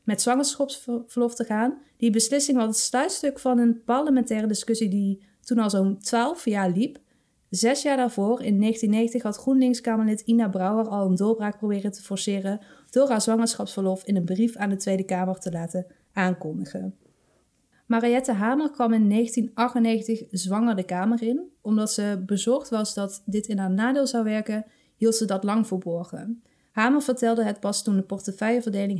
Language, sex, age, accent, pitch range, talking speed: Dutch, female, 30-49, Dutch, 200-235 Hz, 165 wpm